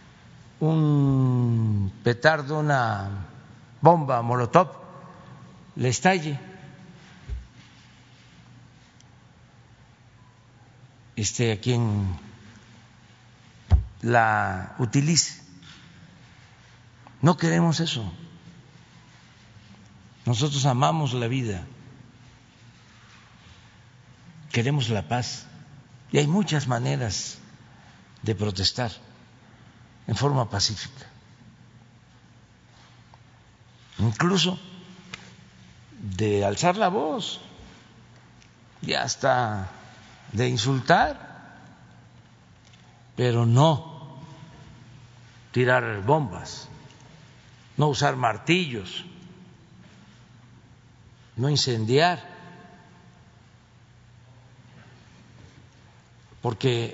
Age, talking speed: 60-79, 55 wpm